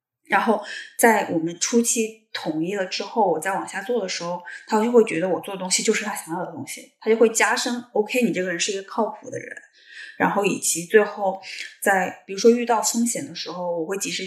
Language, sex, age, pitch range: Chinese, female, 20-39, 180-230 Hz